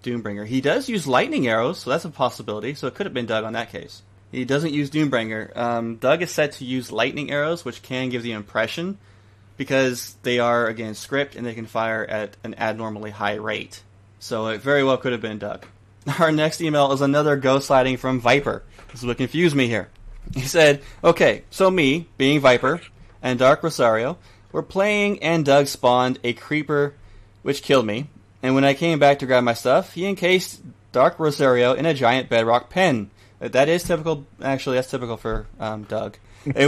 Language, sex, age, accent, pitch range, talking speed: English, male, 20-39, American, 110-150 Hz, 200 wpm